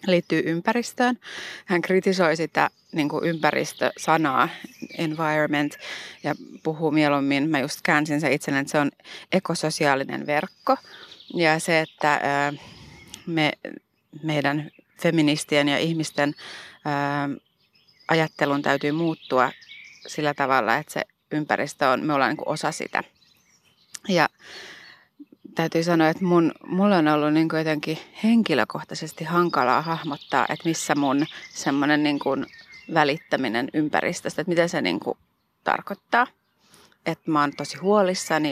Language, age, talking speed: Finnish, 30-49, 110 wpm